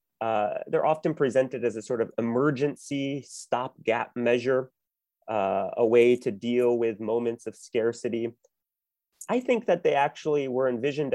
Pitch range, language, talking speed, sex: 115-150 Hz, English, 145 wpm, male